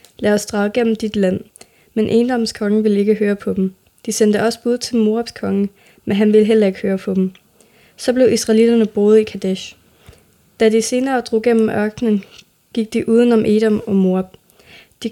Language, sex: Danish, female